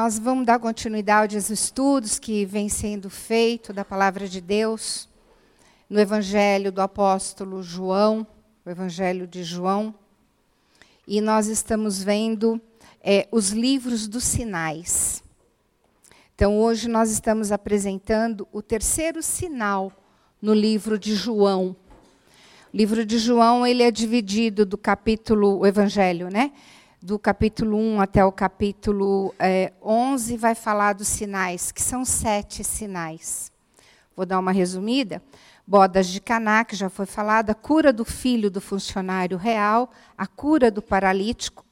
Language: Portuguese